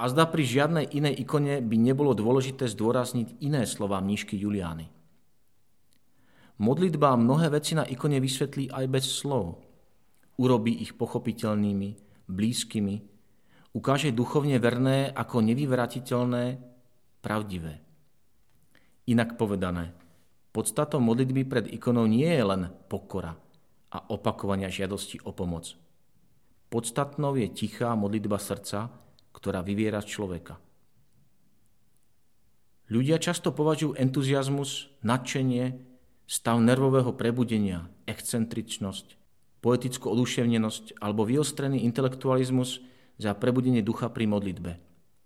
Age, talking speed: 40-59, 100 wpm